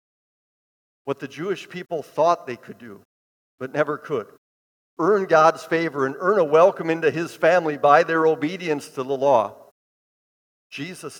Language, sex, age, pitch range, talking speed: English, male, 50-69, 140-175 Hz, 150 wpm